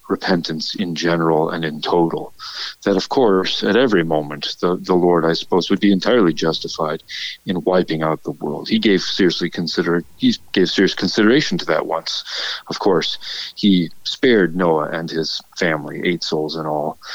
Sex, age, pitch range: male, 40-59, 85-105 Hz